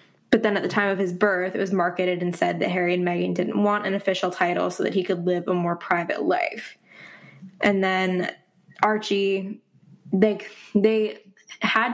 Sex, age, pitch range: female, 10-29, 180-195 Hz